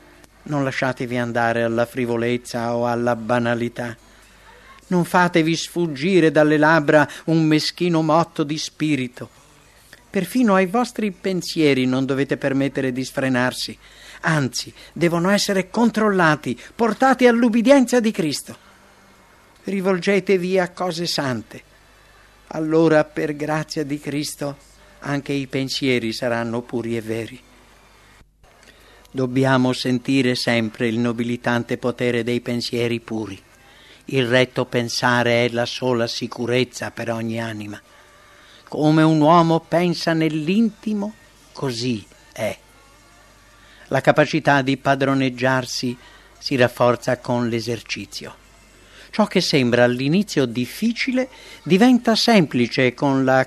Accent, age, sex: Italian, 50-69, male